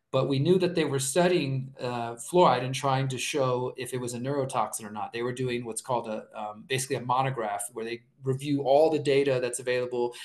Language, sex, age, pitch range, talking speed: English, male, 30-49, 125-145 Hz, 225 wpm